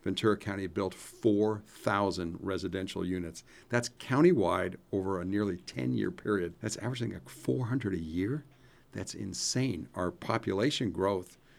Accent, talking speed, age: American, 125 wpm, 50-69